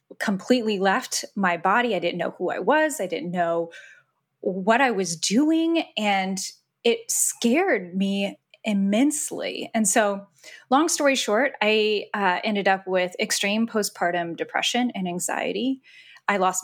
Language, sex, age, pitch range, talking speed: English, female, 20-39, 185-225 Hz, 140 wpm